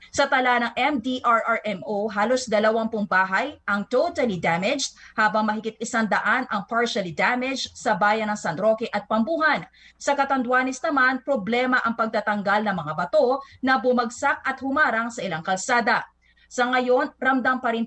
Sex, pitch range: female, 215-270 Hz